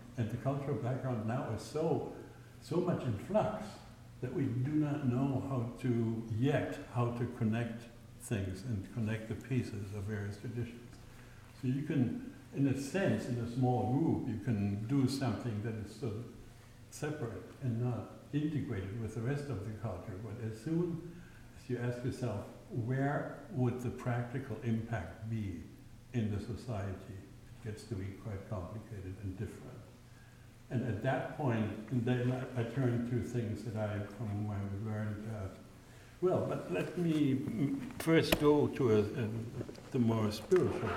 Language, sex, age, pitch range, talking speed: English, male, 60-79, 105-125 Hz, 165 wpm